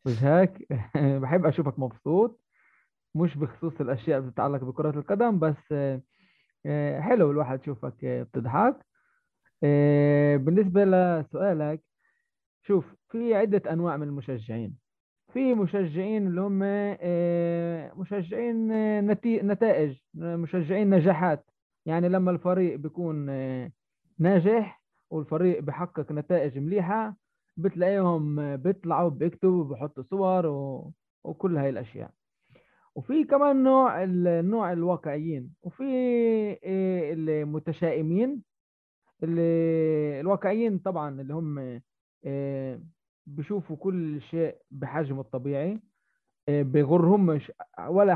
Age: 20-39